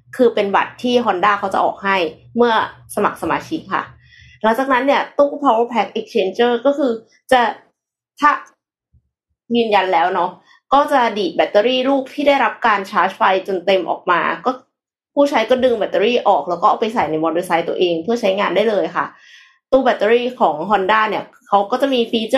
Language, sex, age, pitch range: Thai, female, 20-39, 190-255 Hz